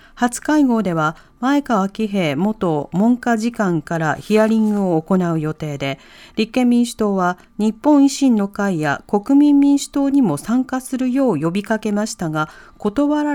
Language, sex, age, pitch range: Japanese, female, 40-59, 180-250 Hz